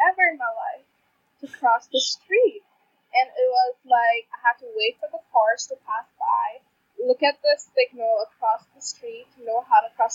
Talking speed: 200 wpm